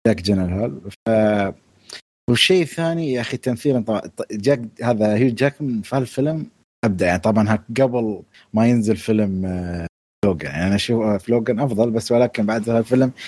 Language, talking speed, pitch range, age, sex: Arabic, 145 wpm, 105-130 Hz, 30-49, male